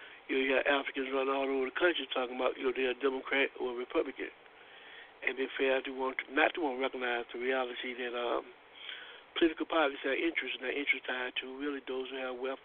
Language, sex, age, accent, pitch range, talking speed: English, male, 60-79, American, 130-185 Hz, 230 wpm